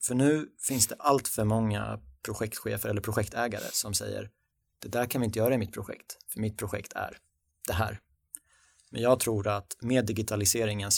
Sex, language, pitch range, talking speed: male, Swedish, 95-120 Hz, 180 wpm